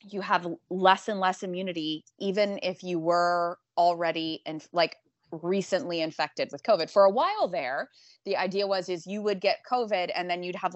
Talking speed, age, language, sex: 185 wpm, 20-39, English, female